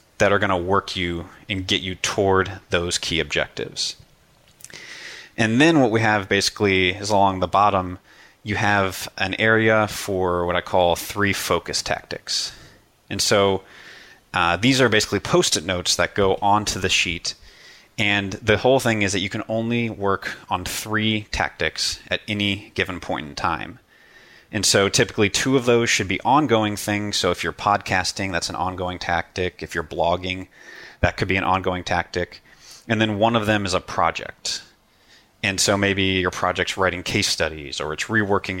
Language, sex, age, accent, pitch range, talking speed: English, male, 30-49, American, 95-110 Hz, 175 wpm